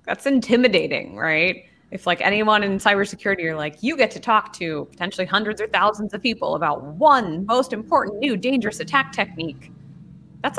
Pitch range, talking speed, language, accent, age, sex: 175-240 Hz, 170 wpm, English, American, 20-39, female